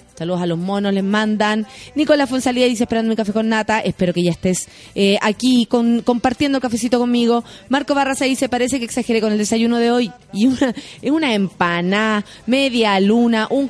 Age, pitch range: 20-39, 205-260 Hz